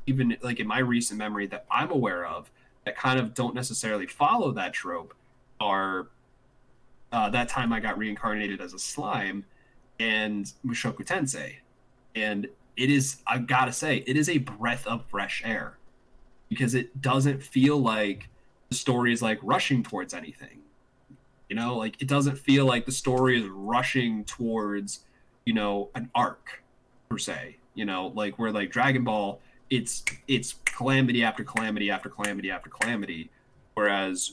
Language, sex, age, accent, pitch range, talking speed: English, male, 20-39, American, 105-130 Hz, 160 wpm